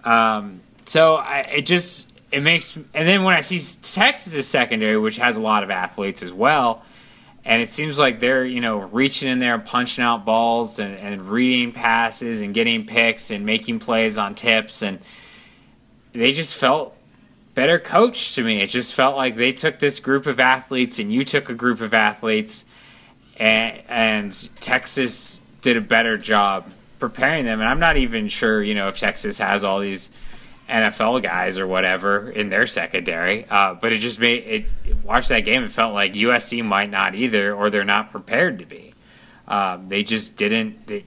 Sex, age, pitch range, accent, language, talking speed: male, 20-39, 105-155 Hz, American, English, 190 wpm